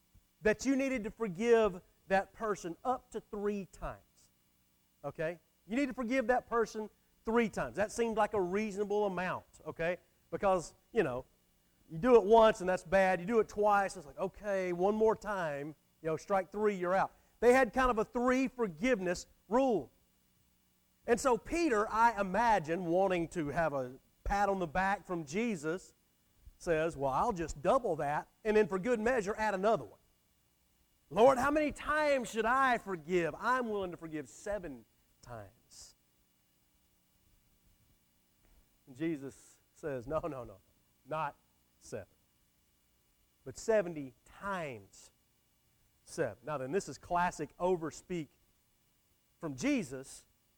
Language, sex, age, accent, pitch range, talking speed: English, male, 40-59, American, 135-220 Hz, 145 wpm